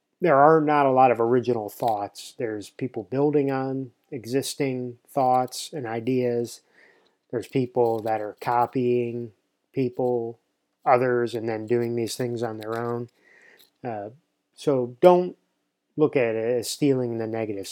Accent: American